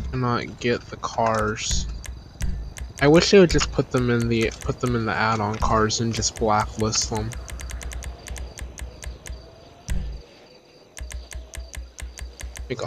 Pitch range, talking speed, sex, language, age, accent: 75-130 Hz, 110 wpm, male, English, 20-39, American